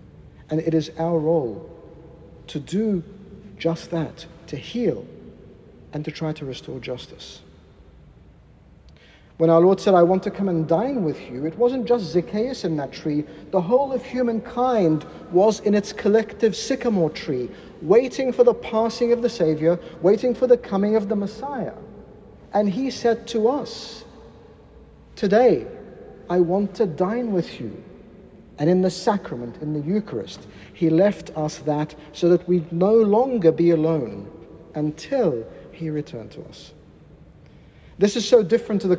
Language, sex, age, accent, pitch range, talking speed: English, male, 50-69, British, 165-225 Hz, 155 wpm